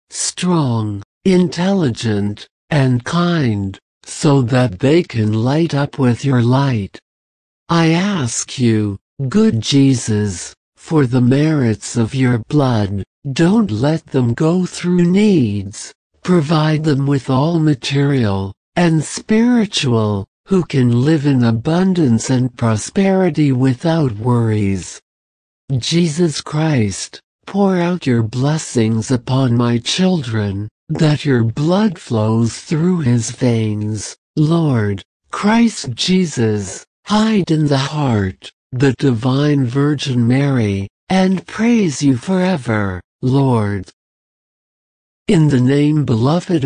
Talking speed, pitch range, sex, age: 105 wpm, 110-160 Hz, male, 60-79